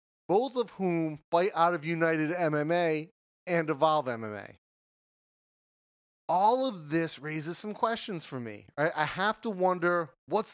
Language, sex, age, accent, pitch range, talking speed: English, male, 30-49, American, 150-185 Hz, 140 wpm